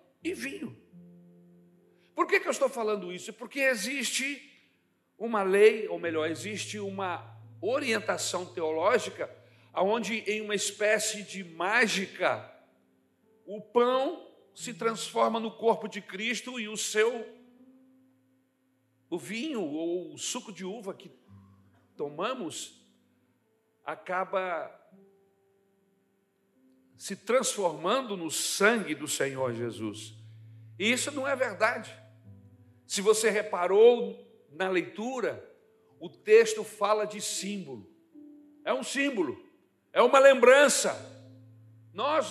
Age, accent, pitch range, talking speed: 60-79, Brazilian, 175-260 Hz, 105 wpm